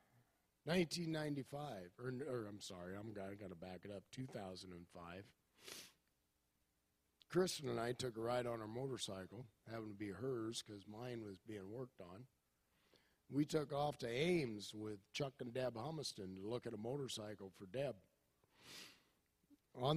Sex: male